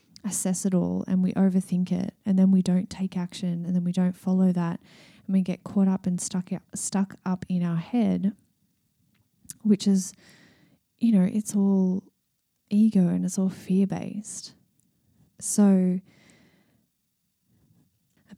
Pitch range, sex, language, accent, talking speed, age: 180-200 Hz, female, English, Australian, 145 wpm, 20-39